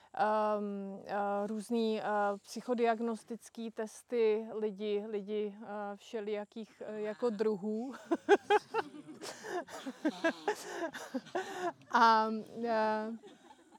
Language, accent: Czech, native